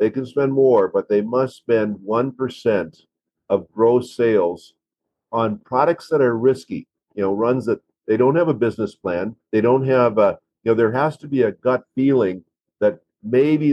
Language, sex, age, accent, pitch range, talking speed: English, male, 50-69, American, 110-130 Hz, 185 wpm